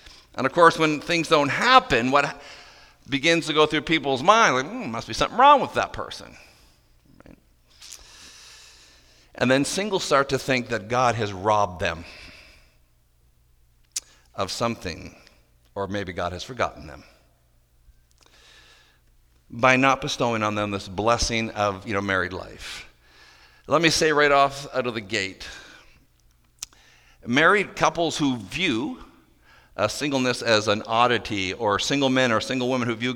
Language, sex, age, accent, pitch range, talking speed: English, male, 50-69, American, 90-130 Hz, 145 wpm